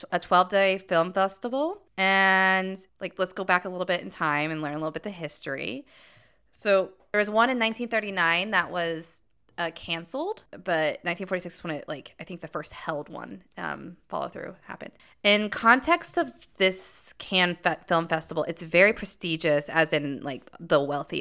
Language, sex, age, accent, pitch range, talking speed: English, female, 20-39, American, 155-190 Hz, 175 wpm